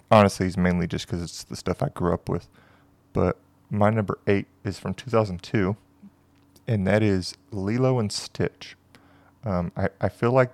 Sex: male